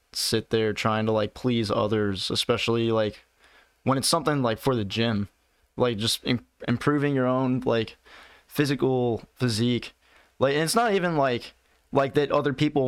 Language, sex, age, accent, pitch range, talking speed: English, male, 20-39, American, 115-135 Hz, 155 wpm